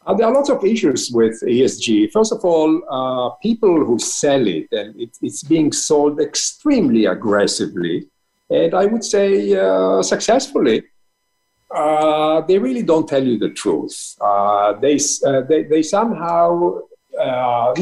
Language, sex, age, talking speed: English, male, 50-69, 150 wpm